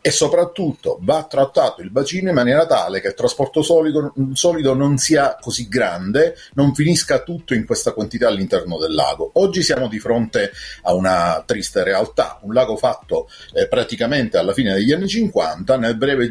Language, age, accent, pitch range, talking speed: Italian, 40-59, native, 110-170 Hz, 175 wpm